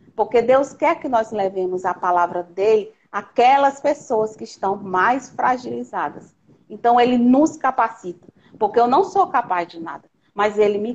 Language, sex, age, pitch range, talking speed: Portuguese, female, 40-59, 205-265 Hz, 160 wpm